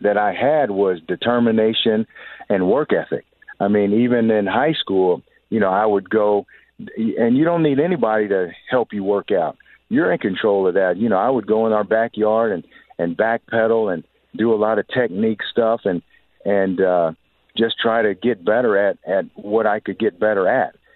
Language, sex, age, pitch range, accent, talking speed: English, male, 50-69, 95-120 Hz, American, 195 wpm